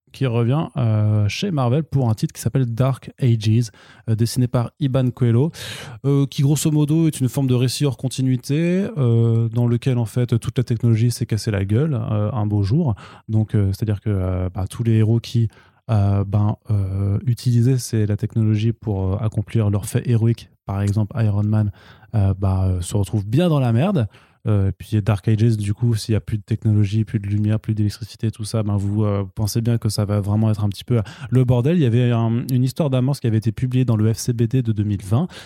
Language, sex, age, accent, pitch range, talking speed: French, male, 20-39, French, 105-130 Hz, 220 wpm